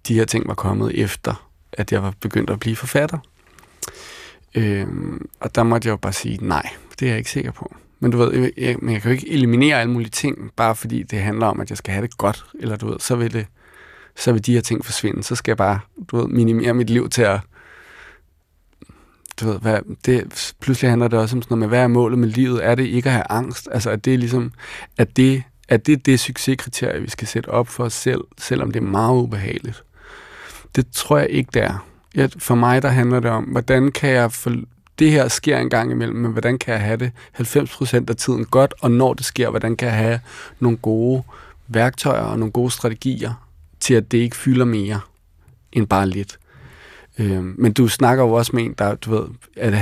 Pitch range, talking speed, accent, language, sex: 110-125 Hz, 220 wpm, native, Danish, male